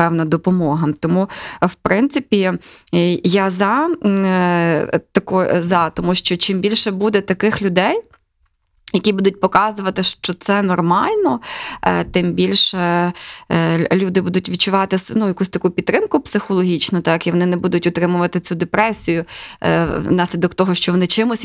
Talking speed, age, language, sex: 135 wpm, 20-39, Ukrainian, female